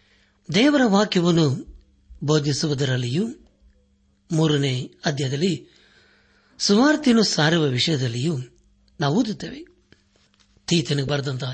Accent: native